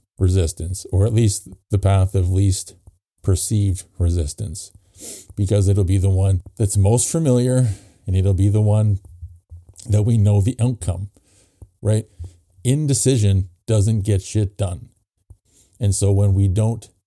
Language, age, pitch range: English, 50-69, 95-105 Hz